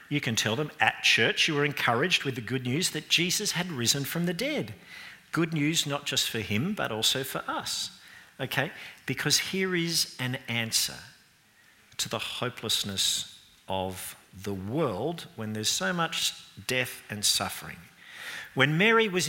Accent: Australian